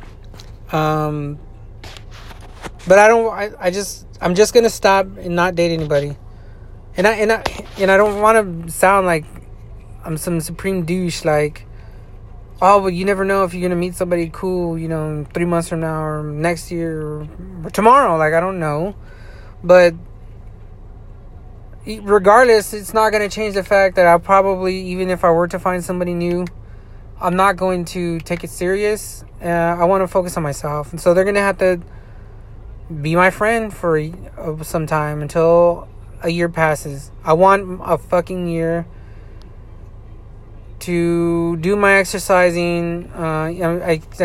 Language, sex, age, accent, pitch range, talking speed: English, male, 20-39, American, 110-180 Hz, 165 wpm